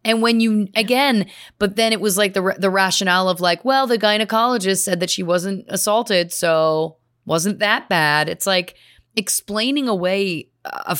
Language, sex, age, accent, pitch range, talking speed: English, female, 30-49, American, 155-220 Hz, 170 wpm